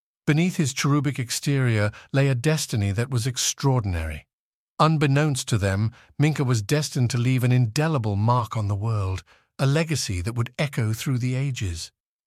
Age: 50-69